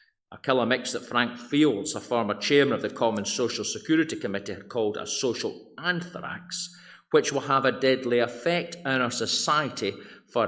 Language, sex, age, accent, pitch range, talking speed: English, male, 50-69, British, 120-175 Hz, 165 wpm